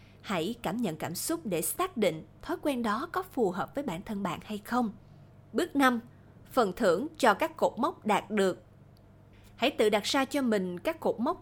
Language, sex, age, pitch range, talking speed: Vietnamese, female, 20-39, 180-260 Hz, 205 wpm